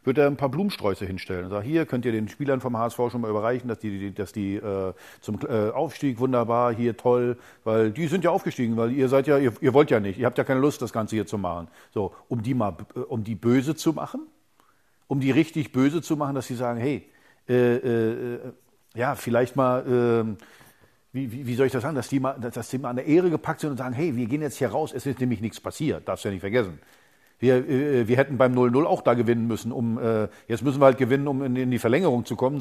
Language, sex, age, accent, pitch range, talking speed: German, male, 50-69, German, 120-140 Hz, 245 wpm